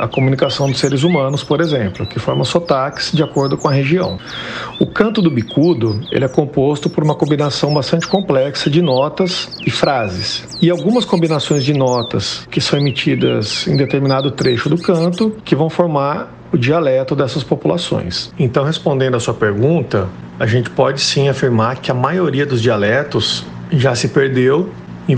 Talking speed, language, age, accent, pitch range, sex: 165 wpm, Portuguese, 50-69, Brazilian, 125-160 Hz, male